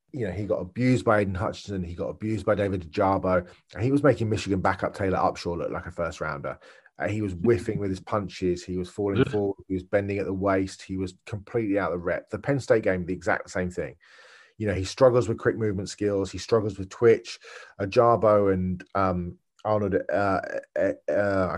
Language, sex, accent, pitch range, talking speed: English, male, British, 90-110 Hz, 210 wpm